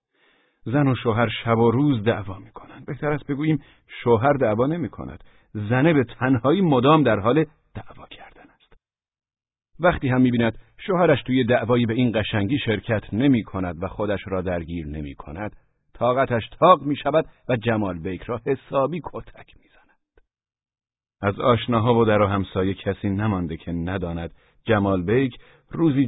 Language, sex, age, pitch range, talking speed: Persian, male, 50-69, 95-125 Hz, 145 wpm